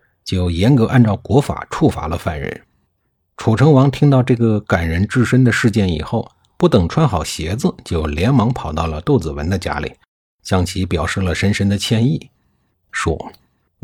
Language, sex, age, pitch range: Chinese, male, 50-69, 90-125 Hz